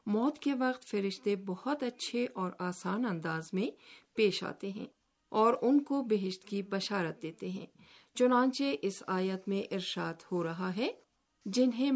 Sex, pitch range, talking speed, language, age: female, 180-235 Hz, 150 wpm, Urdu, 50-69